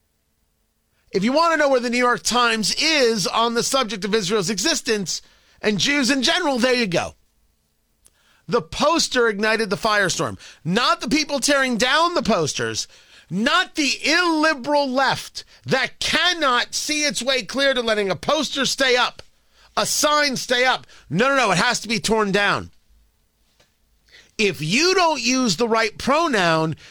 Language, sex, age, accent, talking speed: English, male, 40-59, American, 160 wpm